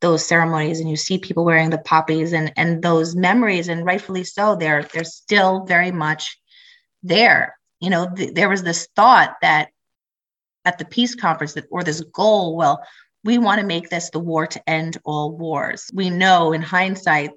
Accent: American